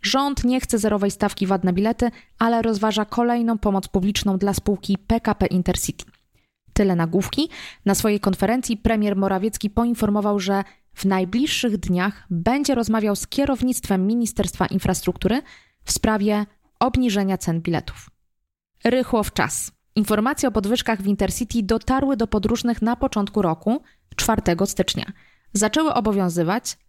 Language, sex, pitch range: Polish, female, 190-230 Hz